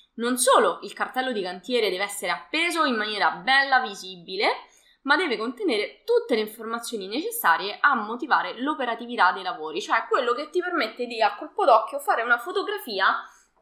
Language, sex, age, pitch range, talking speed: Italian, female, 20-39, 215-345 Hz, 165 wpm